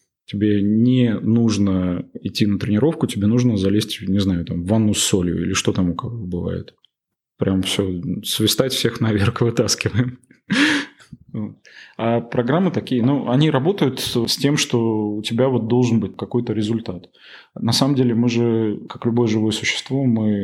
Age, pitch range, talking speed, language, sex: 20-39, 100-120 Hz, 155 wpm, Russian, male